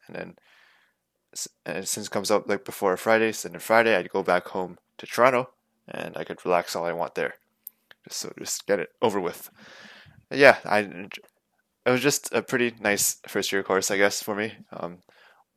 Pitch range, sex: 95-115 Hz, male